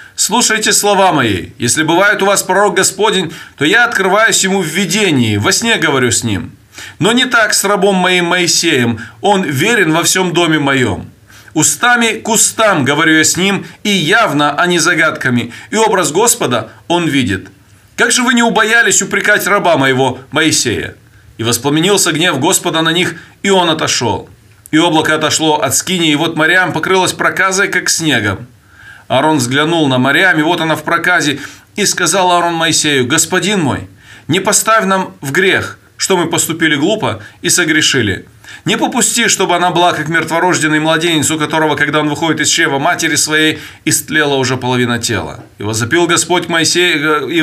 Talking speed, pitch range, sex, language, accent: 165 wpm, 140-185 Hz, male, Russian, native